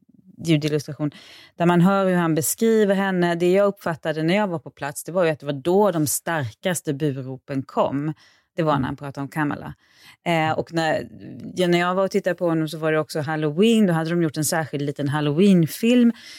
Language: Swedish